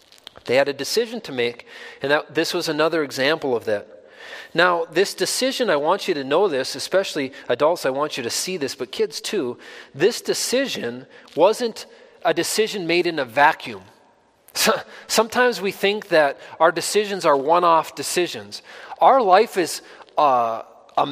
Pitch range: 170-270 Hz